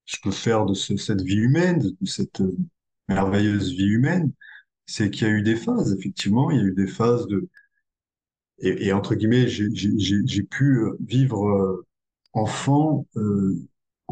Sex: male